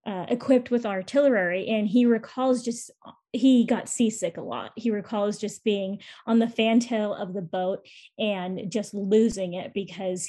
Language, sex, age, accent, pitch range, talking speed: English, female, 20-39, American, 195-235 Hz, 165 wpm